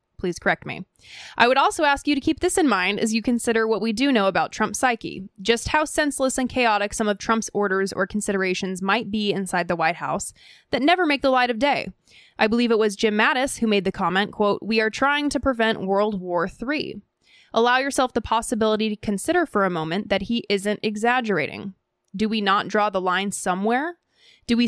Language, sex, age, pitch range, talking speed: English, female, 20-39, 195-255 Hz, 215 wpm